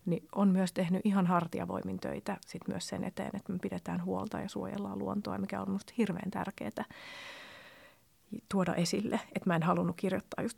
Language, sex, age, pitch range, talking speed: Finnish, female, 30-49, 175-210 Hz, 175 wpm